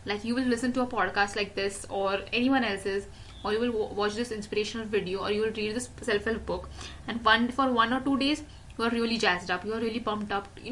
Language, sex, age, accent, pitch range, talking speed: English, female, 10-29, Indian, 210-270 Hz, 245 wpm